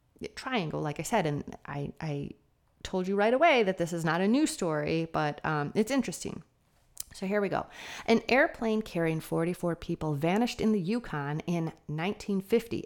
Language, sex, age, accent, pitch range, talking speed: English, female, 30-49, American, 155-215 Hz, 175 wpm